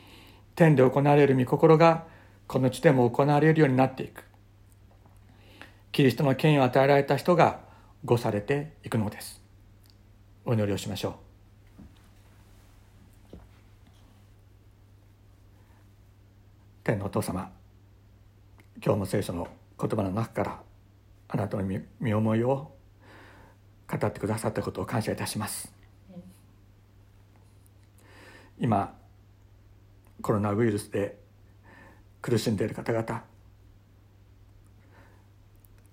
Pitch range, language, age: 100-115 Hz, Japanese, 60-79